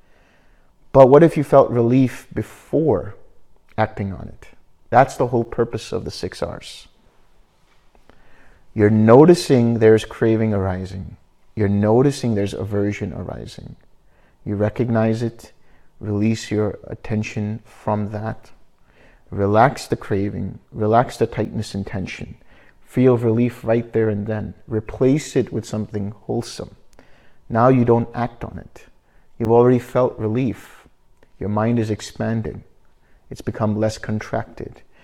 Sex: male